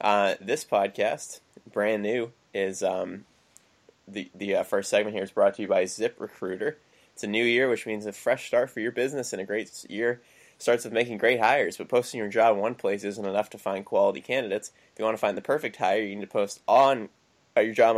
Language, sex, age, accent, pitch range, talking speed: English, male, 20-39, American, 100-115 Hz, 230 wpm